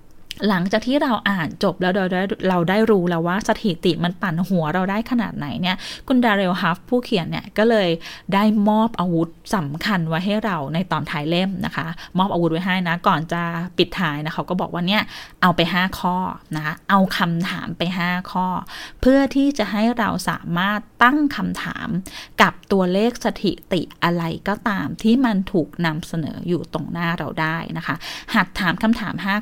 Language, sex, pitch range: Thai, female, 175-220 Hz